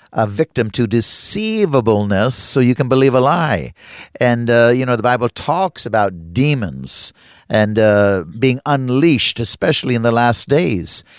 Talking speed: 150 wpm